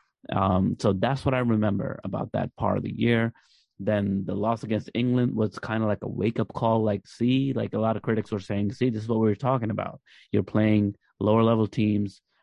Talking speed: 215 wpm